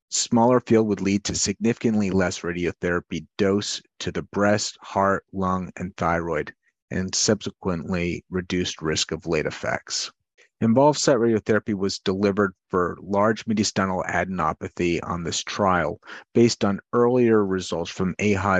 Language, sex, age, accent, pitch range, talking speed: English, male, 30-49, American, 90-105 Hz, 130 wpm